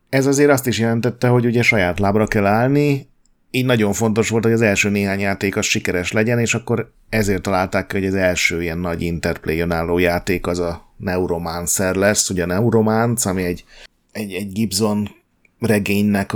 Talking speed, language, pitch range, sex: 170 wpm, Hungarian, 90-110 Hz, male